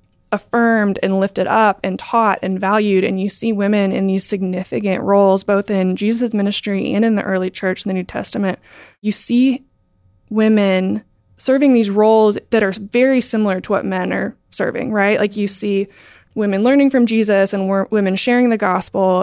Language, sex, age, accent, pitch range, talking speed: English, female, 20-39, American, 190-215 Hz, 180 wpm